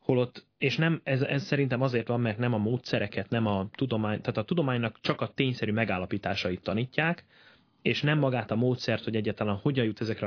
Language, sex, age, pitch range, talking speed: Hungarian, male, 30-49, 105-130 Hz, 195 wpm